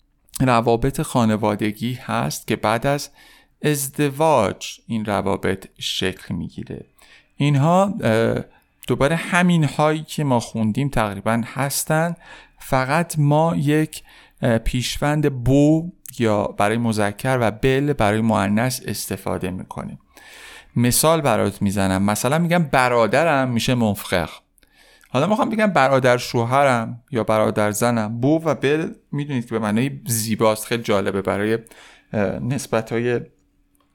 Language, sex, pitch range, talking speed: Persian, male, 105-140 Hz, 115 wpm